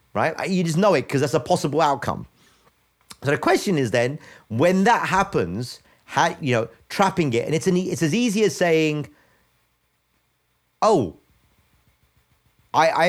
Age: 40-59